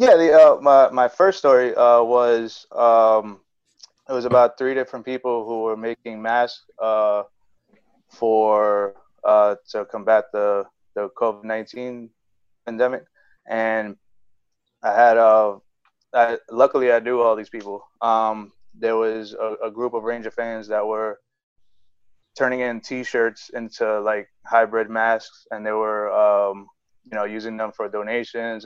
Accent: American